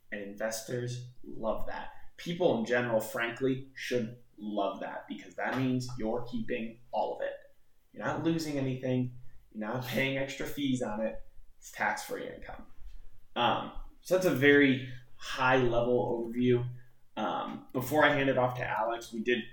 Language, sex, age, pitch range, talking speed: English, male, 20-39, 110-135 Hz, 155 wpm